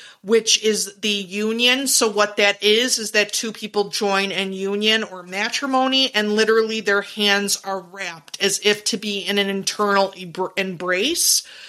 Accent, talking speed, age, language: American, 160 wpm, 30-49, English